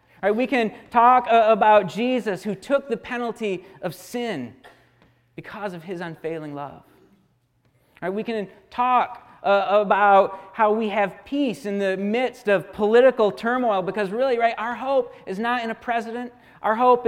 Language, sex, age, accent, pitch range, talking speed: English, male, 40-59, American, 190-235 Hz, 170 wpm